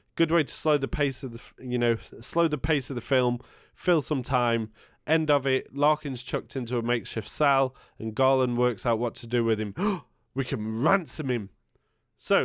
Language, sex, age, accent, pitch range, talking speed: English, male, 20-39, British, 120-150 Hz, 200 wpm